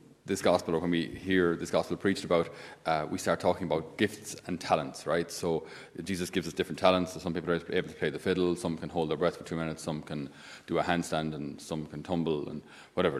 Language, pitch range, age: English, 85-100 Hz, 30-49